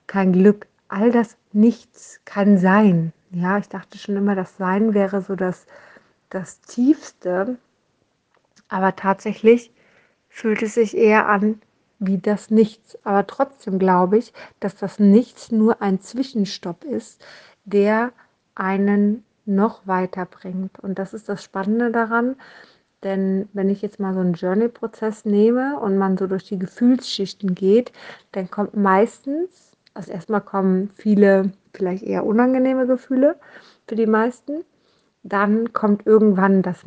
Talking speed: 135 wpm